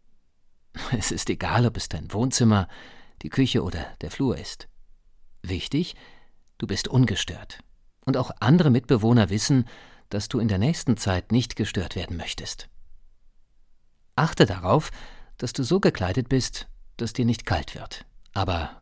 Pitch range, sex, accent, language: 95-125 Hz, male, German, German